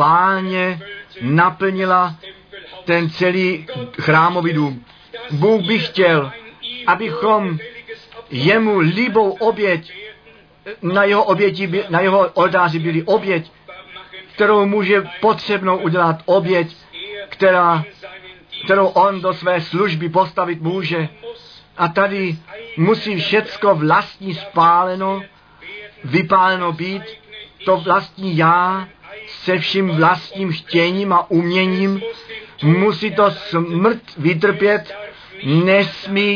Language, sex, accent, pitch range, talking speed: Czech, male, native, 170-200 Hz, 90 wpm